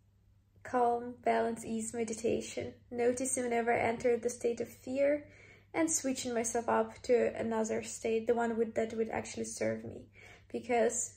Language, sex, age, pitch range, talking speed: English, female, 20-39, 225-245 Hz, 150 wpm